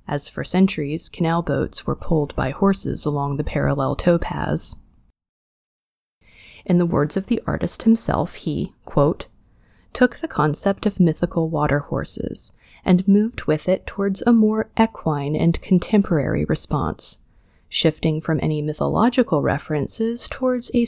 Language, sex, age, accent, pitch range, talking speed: English, female, 30-49, American, 150-205 Hz, 130 wpm